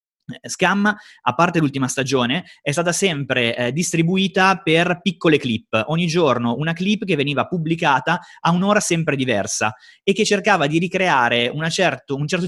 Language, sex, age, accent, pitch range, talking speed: Italian, male, 20-39, native, 130-180 Hz, 150 wpm